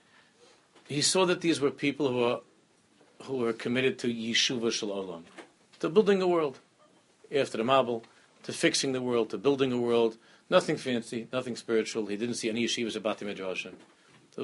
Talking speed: 165 wpm